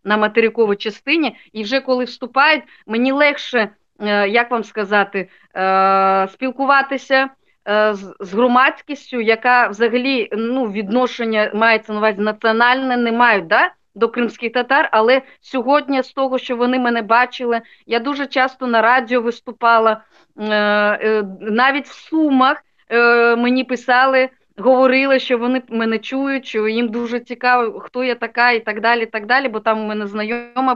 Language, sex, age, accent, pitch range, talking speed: Ukrainian, female, 20-39, native, 215-255 Hz, 135 wpm